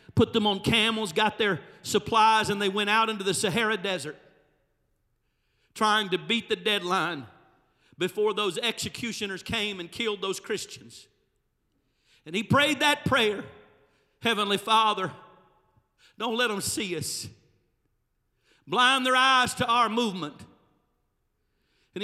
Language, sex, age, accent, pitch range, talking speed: English, male, 50-69, American, 185-230 Hz, 130 wpm